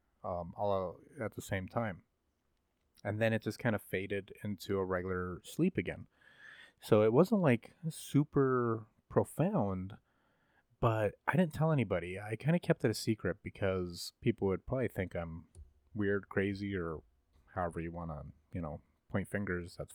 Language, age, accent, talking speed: English, 30-49, American, 160 wpm